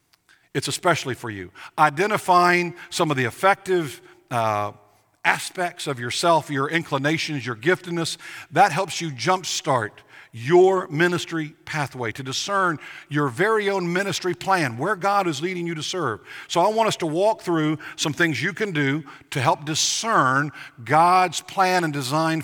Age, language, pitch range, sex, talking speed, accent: 50-69, English, 150-185 Hz, male, 150 wpm, American